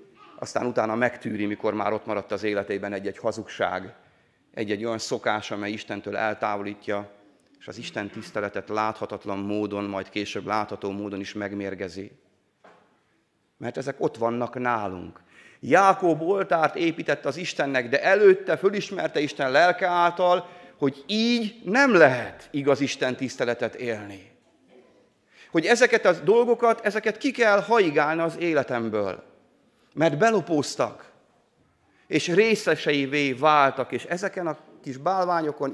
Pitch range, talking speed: 110-170 Hz, 125 wpm